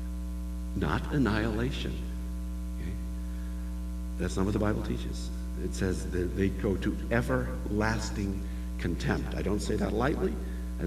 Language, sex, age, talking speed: English, male, 60-79, 120 wpm